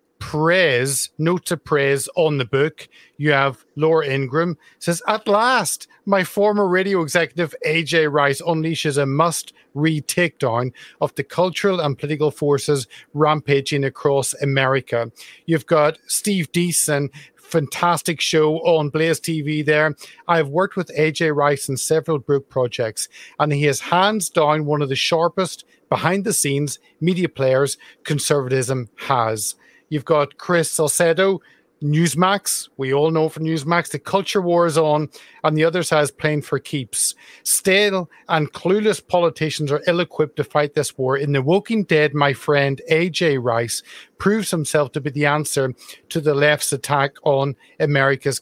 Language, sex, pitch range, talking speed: English, male, 145-175 Hz, 150 wpm